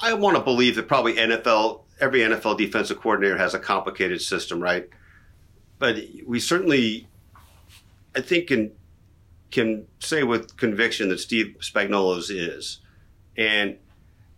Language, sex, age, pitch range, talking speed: English, male, 50-69, 95-120 Hz, 130 wpm